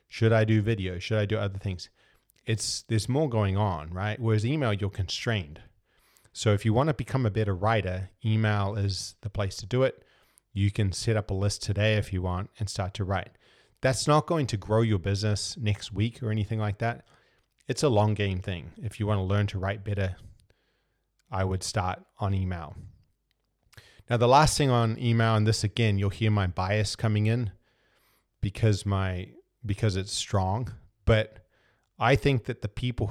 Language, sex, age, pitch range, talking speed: English, male, 30-49, 95-115 Hz, 190 wpm